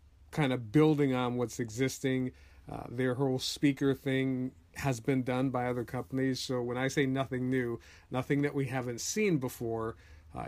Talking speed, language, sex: 170 wpm, English, male